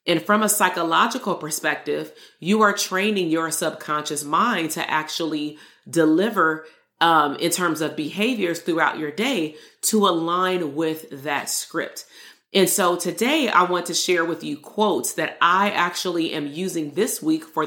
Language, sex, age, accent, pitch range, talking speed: English, female, 30-49, American, 155-195 Hz, 155 wpm